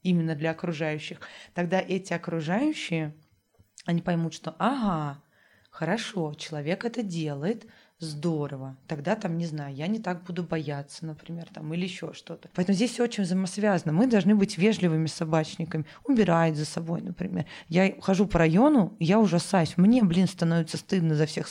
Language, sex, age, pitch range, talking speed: Russian, female, 20-39, 160-190 Hz, 155 wpm